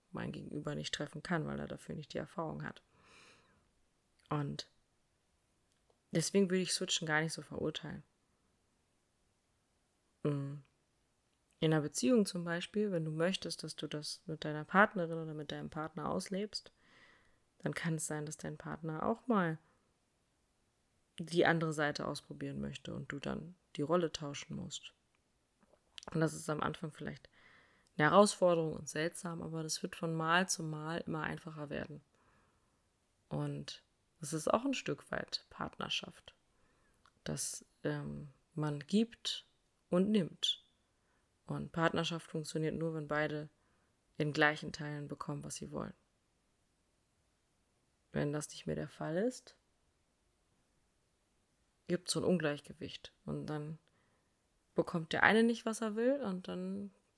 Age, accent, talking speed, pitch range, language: 20-39, German, 135 wpm, 150-175 Hz, German